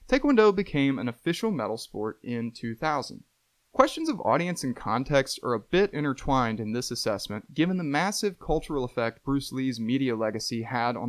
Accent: American